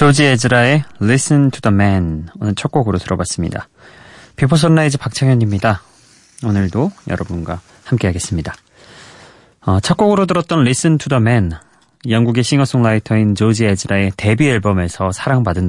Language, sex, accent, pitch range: Korean, male, native, 100-140 Hz